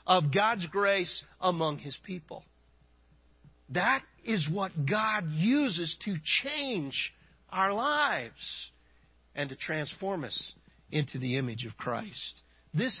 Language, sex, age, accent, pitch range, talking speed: English, male, 50-69, American, 150-250 Hz, 115 wpm